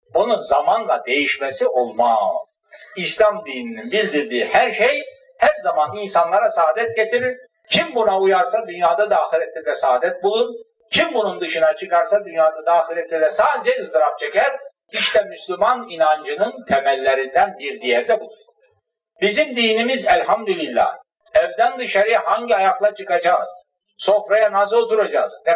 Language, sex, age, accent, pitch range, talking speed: Turkish, male, 60-79, native, 180-260 Hz, 125 wpm